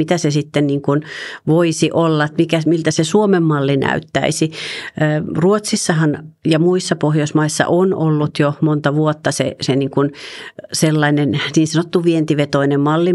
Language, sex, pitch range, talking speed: Finnish, female, 145-155 Hz, 145 wpm